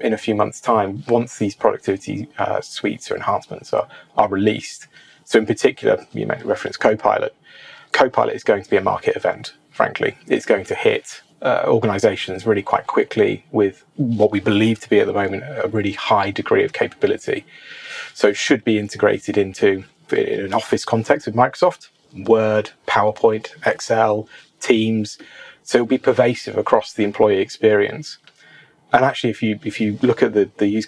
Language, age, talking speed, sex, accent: English, 30-49, 175 wpm, male, British